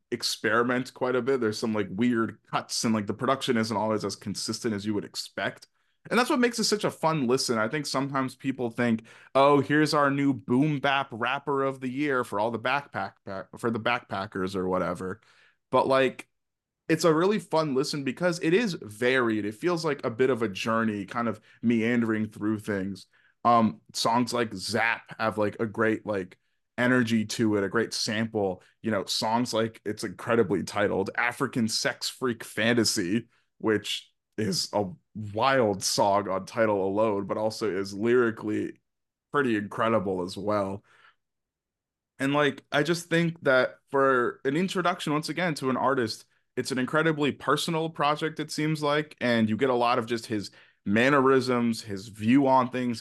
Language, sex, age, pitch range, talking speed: English, male, 20-39, 110-140 Hz, 175 wpm